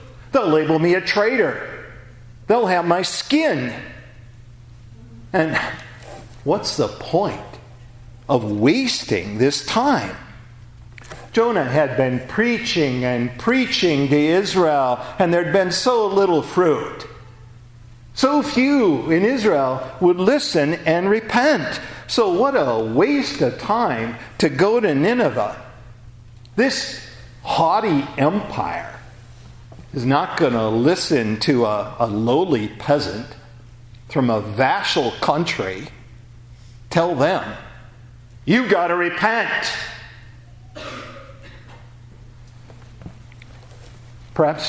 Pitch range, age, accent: 120-160 Hz, 50-69, American